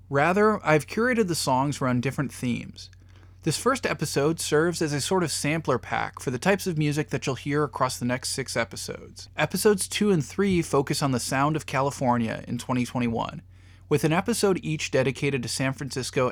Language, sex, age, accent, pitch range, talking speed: English, male, 20-39, American, 120-165 Hz, 190 wpm